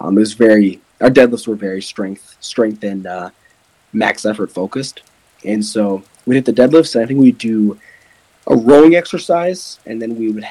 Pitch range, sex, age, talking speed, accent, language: 100-125 Hz, male, 20-39, 190 wpm, American, English